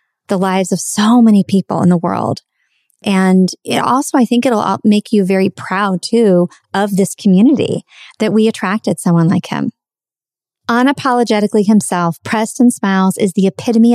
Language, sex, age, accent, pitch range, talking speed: English, female, 40-59, American, 180-215 Hz, 155 wpm